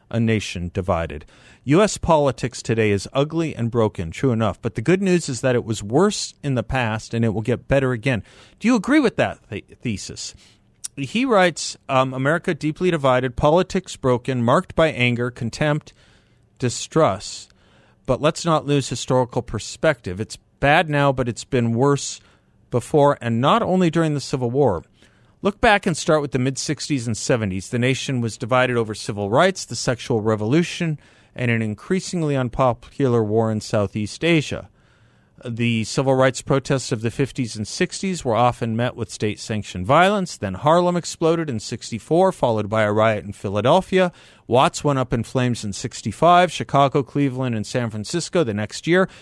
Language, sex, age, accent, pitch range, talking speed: English, male, 50-69, American, 110-155 Hz, 170 wpm